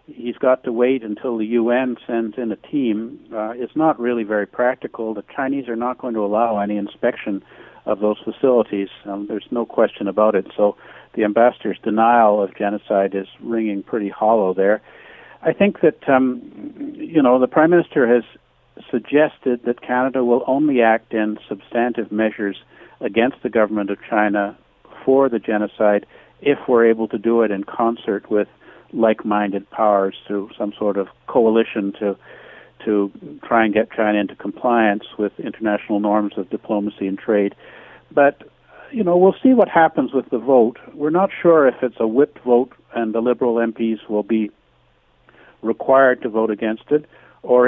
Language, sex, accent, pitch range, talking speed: English, male, American, 105-125 Hz, 170 wpm